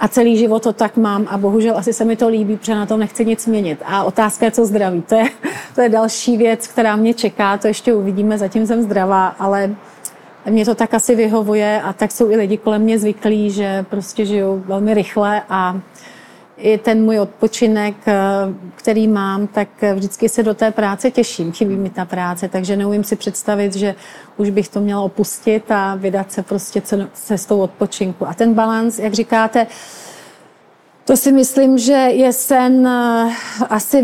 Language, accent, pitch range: Czech, native, 205-230 Hz